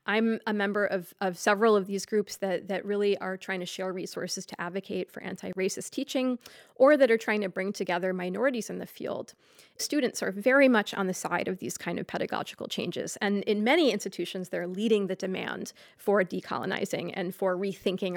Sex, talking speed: female, 195 wpm